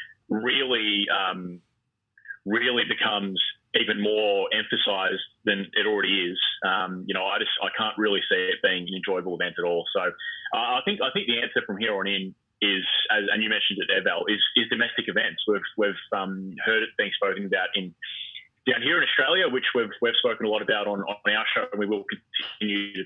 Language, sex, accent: English, male, Australian